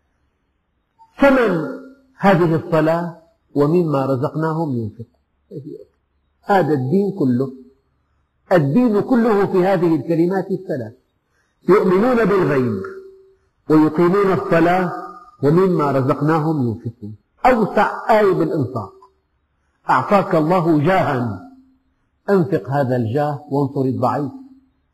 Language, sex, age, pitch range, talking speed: Arabic, male, 50-69, 130-195 Hz, 80 wpm